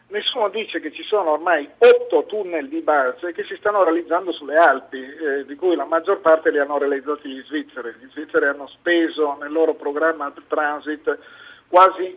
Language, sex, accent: Italian, male, native